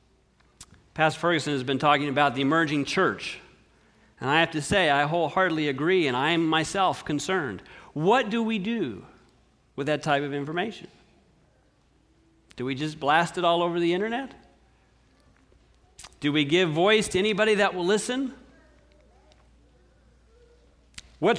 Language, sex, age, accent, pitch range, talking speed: English, male, 40-59, American, 160-230 Hz, 140 wpm